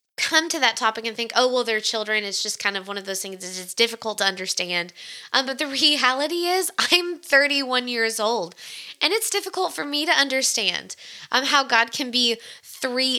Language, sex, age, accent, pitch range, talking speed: English, female, 20-39, American, 205-265 Hz, 205 wpm